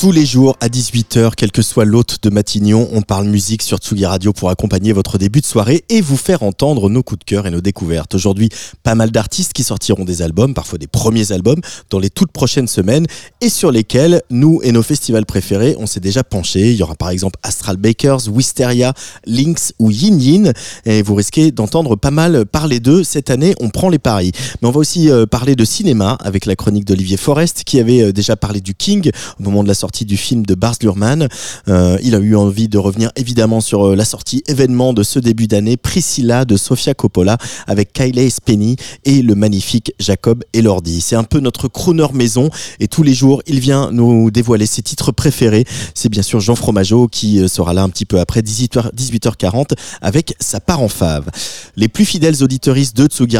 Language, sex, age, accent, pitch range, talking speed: French, male, 20-39, French, 105-135 Hz, 210 wpm